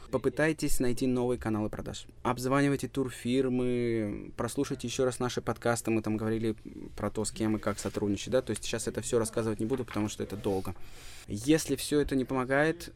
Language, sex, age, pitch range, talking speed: Russian, male, 20-39, 110-130 Hz, 185 wpm